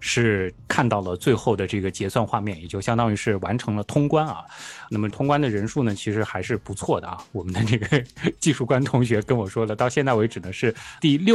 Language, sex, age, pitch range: Chinese, male, 20-39, 105-155 Hz